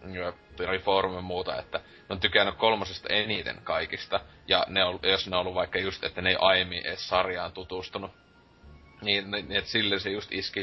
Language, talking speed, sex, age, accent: Finnish, 185 wpm, male, 30-49, native